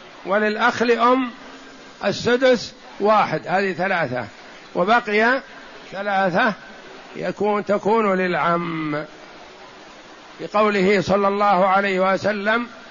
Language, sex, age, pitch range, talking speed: Arabic, male, 60-79, 190-225 Hz, 75 wpm